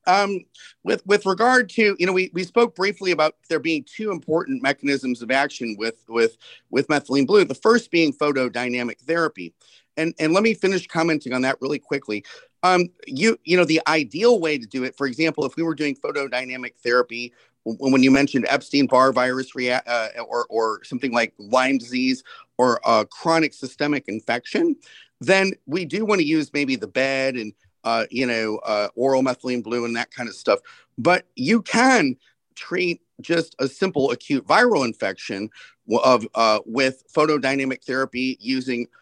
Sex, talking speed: male, 175 wpm